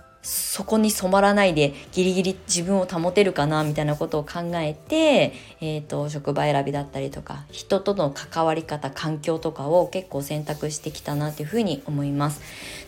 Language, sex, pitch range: Japanese, female, 150-205 Hz